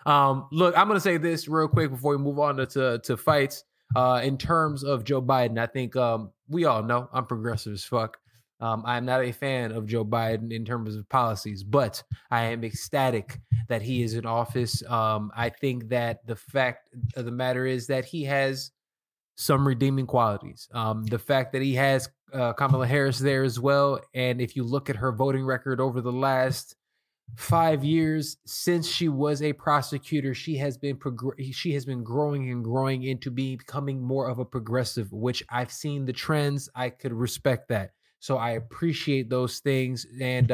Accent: American